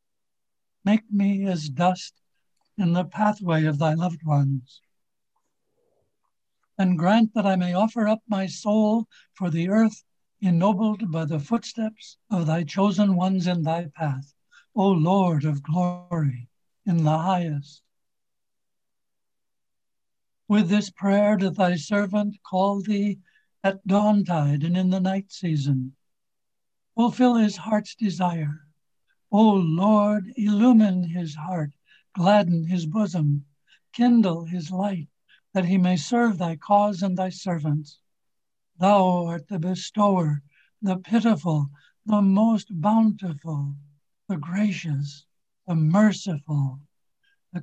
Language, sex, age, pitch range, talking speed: English, male, 60-79, 160-205 Hz, 120 wpm